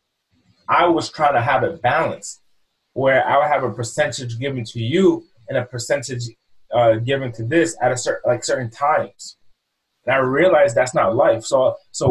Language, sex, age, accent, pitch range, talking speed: English, male, 20-39, American, 125-170 Hz, 185 wpm